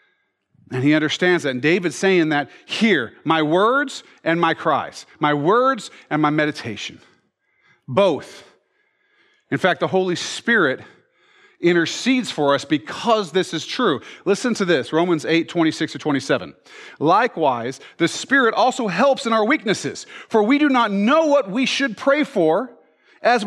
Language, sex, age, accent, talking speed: English, male, 40-59, American, 150 wpm